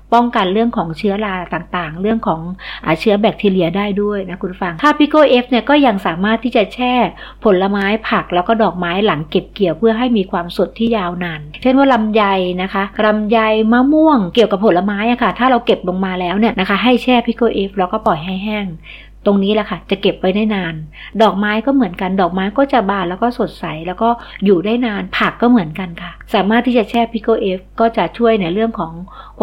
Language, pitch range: Thai, 185-230 Hz